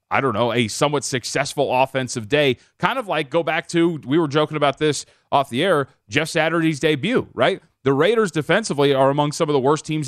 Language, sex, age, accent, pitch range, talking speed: English, male, 30-49, American, 125-160 Hz, 215 wpm